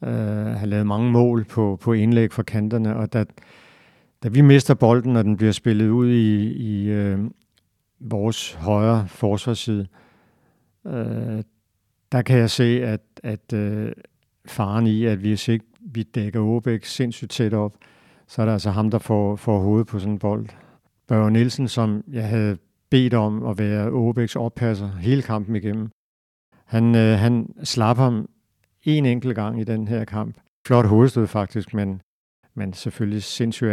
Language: Danish